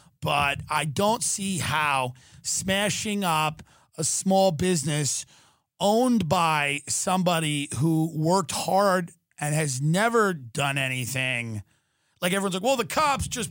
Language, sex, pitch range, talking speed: English, male, 155-220 Hz, 125 wpm